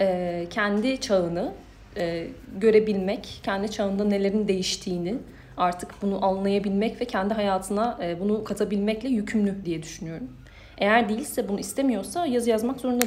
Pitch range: 175-220 Hz